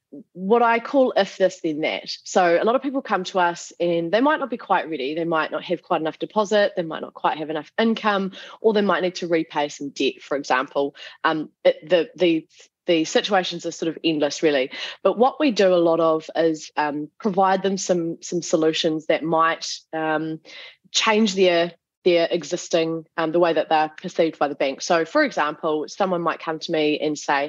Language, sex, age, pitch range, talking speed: English, female, 20-39, 160-205 Hz, 215 wpm